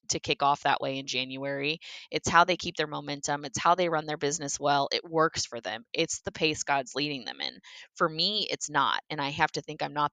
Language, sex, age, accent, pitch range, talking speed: English, female, 20-39, American, 150-195 Hz, 250 wpm